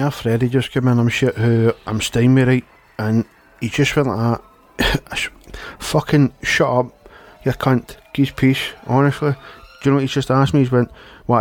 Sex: male